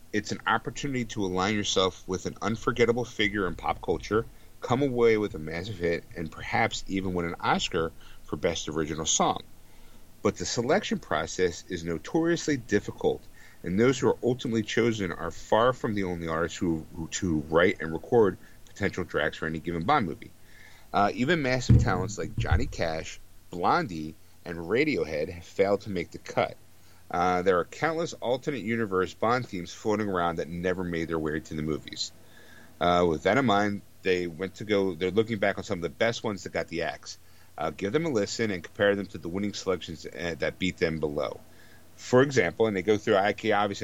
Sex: male